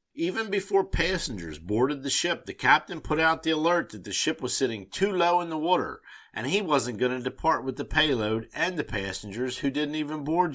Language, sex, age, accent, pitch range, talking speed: English, male, 50-69, American, 105-145 Hz, 215 wpm